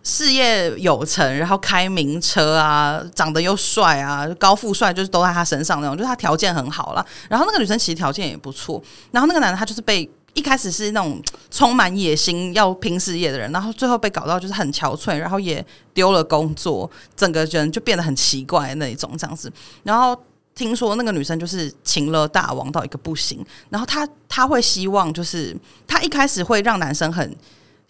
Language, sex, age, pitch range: Chinese, female, 30-49, 155-210 Hz